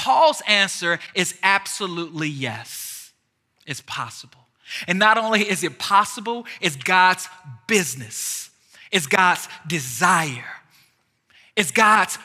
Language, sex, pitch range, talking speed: English, male, 155-205 Hz, 105 wpm